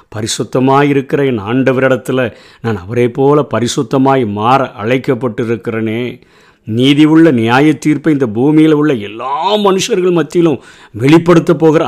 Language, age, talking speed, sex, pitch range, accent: Tamil, 50-69, 100 wpm, male, 120-155 Hz, native